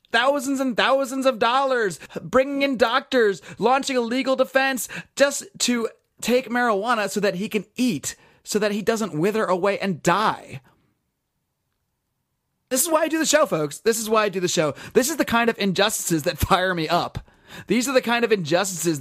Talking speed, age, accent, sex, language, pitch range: 190 wpm, 30-49, American, male, English, 185-240 Hz